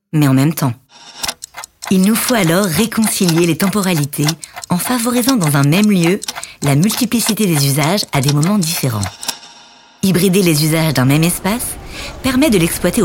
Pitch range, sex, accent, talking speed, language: 145-195 Hz, female, French, 155 wpm, French